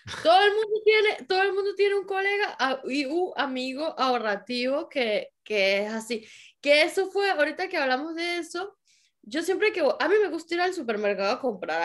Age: 10-29